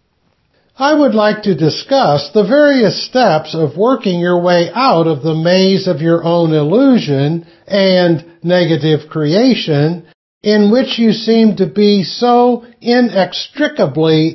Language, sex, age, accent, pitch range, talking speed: English, male, 60-79, American, 160-230 Hz, 130 wpm